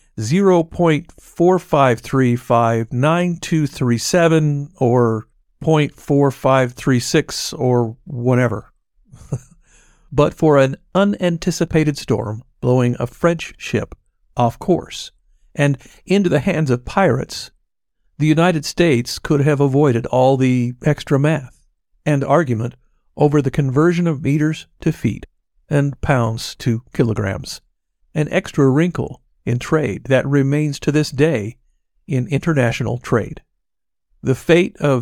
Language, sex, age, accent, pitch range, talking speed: English, male, 50-69, American, 125-155 Hz, 105 wpm